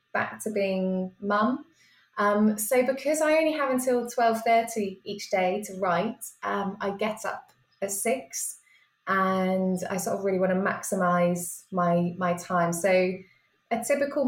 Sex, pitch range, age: female, 180-230 Hz, 20-39